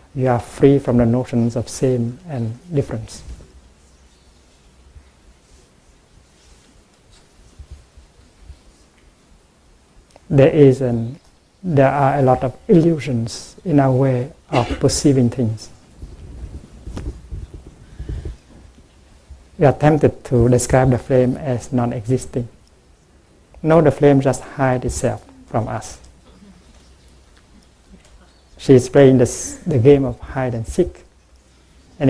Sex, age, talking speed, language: male, 60-79, 95 wpm, English